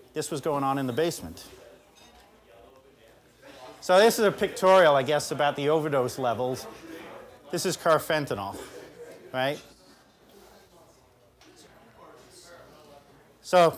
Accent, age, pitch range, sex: American, 40-59, 140-170 Hz, male